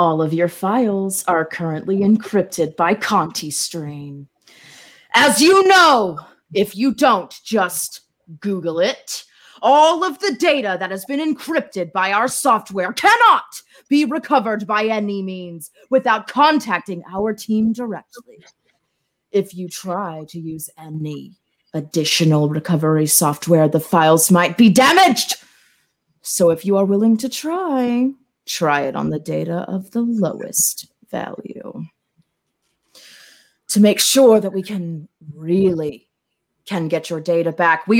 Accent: American